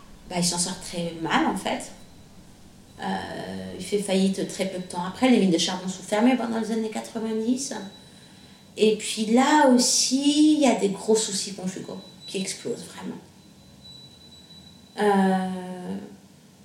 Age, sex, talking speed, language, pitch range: 30-49, female, 150 wpm, French, 195-240 Hz